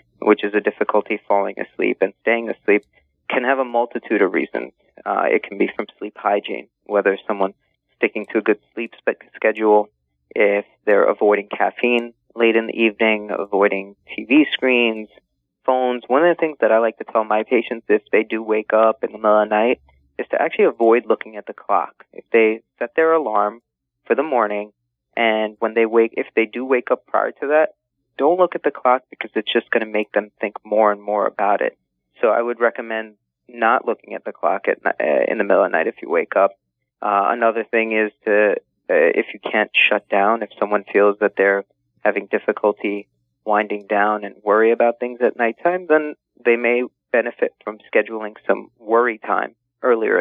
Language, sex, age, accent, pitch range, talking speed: English, male, 30-49, American, 105-120 Hz, 200 wpm